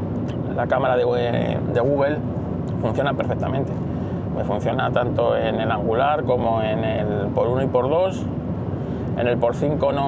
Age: 20-39